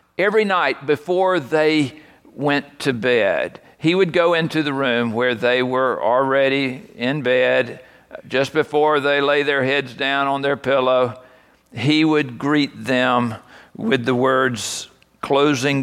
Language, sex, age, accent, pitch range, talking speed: English, male, 50-69, American, 125-190 Hz, 140 wpm